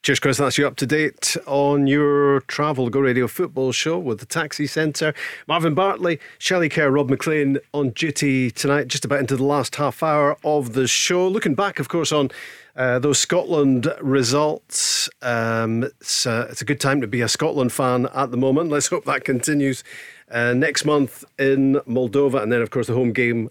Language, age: English, 40-59